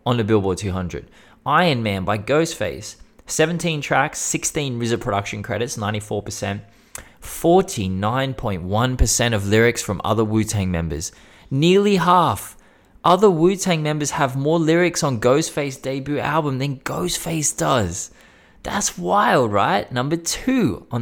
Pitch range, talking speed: 100-140 Hz, 125 wpm